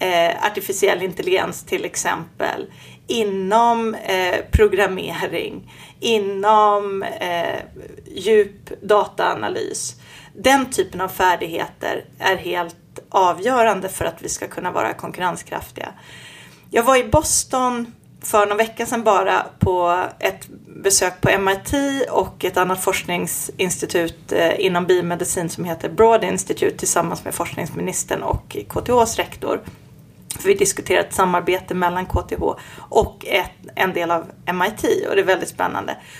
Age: 30-49